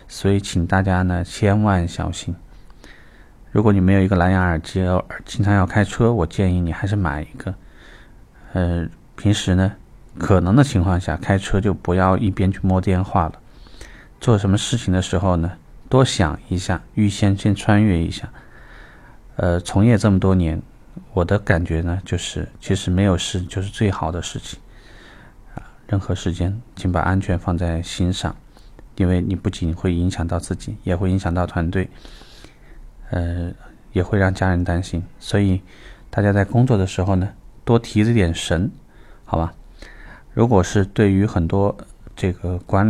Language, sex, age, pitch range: Chinese, male, 20-39, 90-100 Hz